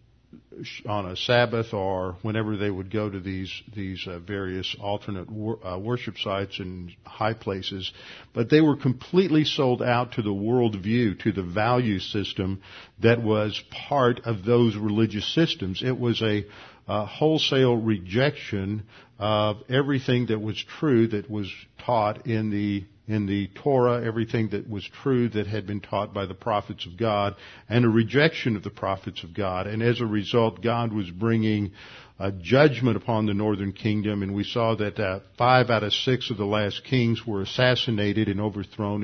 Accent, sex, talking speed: American, male, 170 wpm